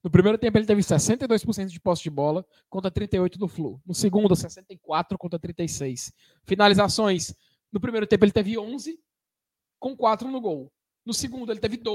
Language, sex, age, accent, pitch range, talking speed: Portuguese, male, 20-39, Brazilian, 175-250 Hz, 170 wpm